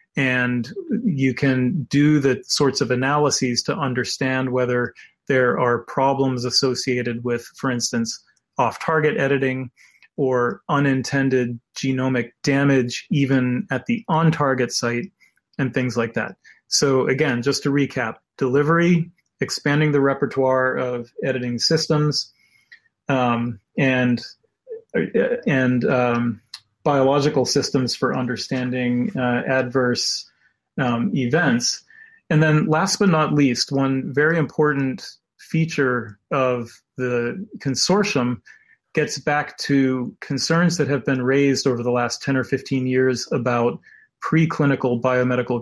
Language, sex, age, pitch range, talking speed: English, male, 30-49, 125-145 Hz, 115 wpm